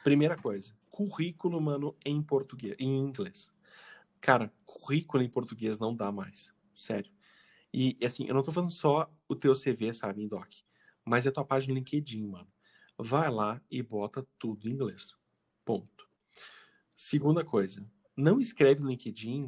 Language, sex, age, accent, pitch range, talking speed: Portuguese, male, 40-59, Brazilian, 105-140 Hz, 150 wpm